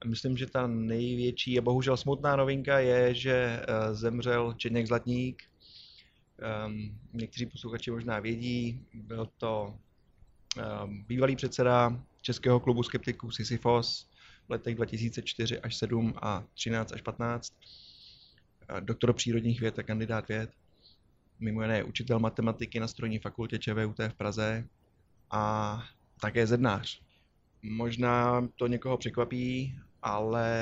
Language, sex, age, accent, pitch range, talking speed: Czech, male, 20-39, native, 105-120 Hz, 115 wpm